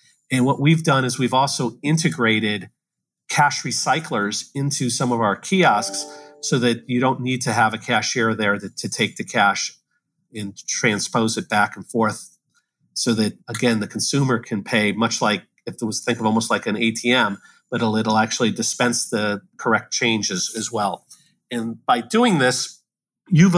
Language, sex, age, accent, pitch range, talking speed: English, male, 40-59, American, 115-140 Hz, 175 wpm